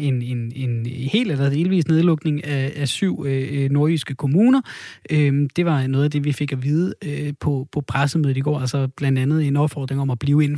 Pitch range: 130-160 Hz